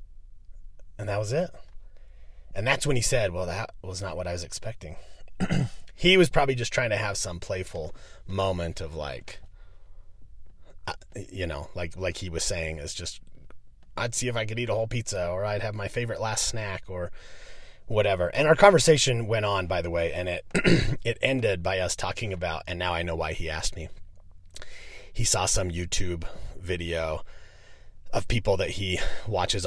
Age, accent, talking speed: 30-49, American, 185 wpm